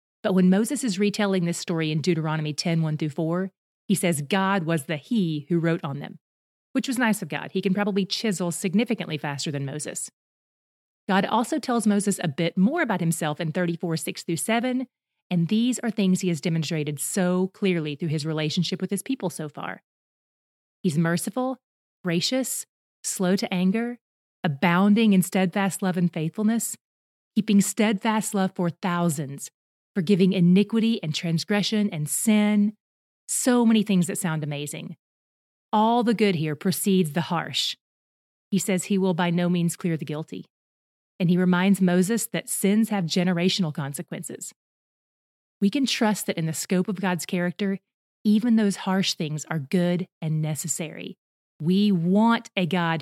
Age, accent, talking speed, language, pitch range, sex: 30-49, American, 165 wpm, English, 165-210 Hz, female